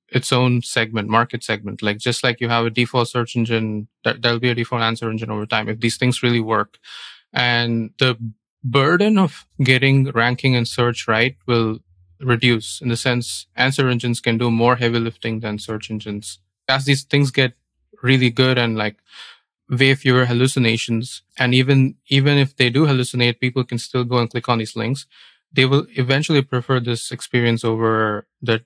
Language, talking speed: English, 180 wpm